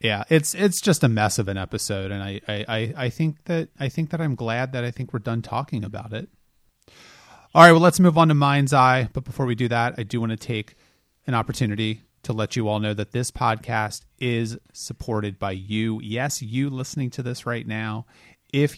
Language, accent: English, American